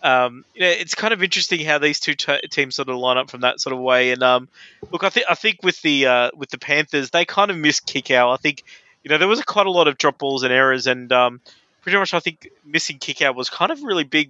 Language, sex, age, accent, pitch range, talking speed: English, male, 20-39, Australian, 130-155 Hz, 285 wpm